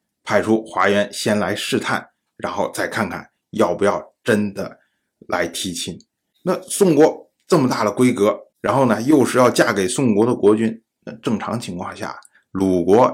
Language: Chinese